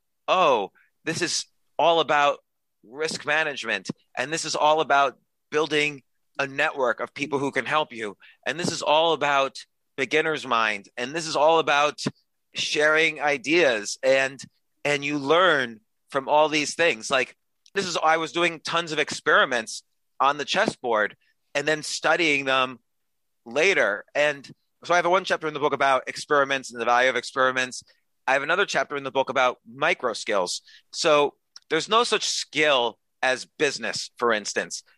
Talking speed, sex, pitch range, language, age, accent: 165 wpm, male, 130-160 Hz, English, 30-49, American